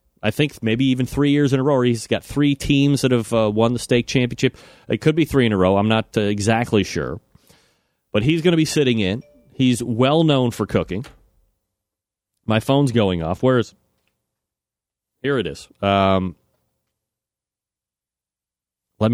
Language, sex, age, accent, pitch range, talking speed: English, male, 30-49, American, 105-140 Hz, 170 wpm